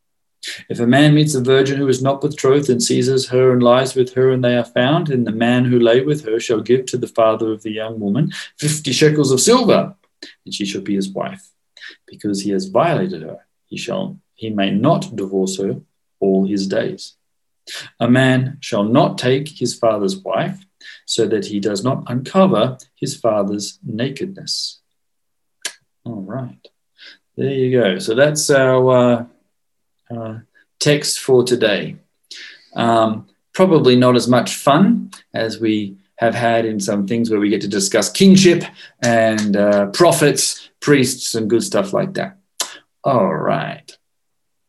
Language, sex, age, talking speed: English, male, 40-59, 165 wpm